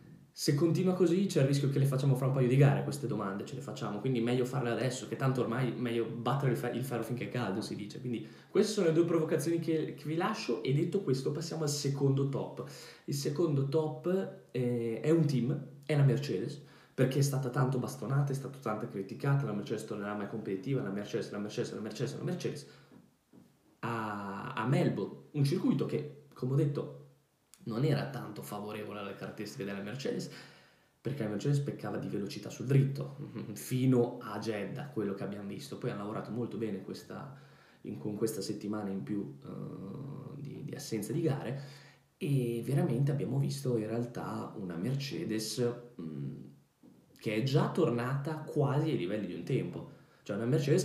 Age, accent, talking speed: 10-29, native, 185 wpm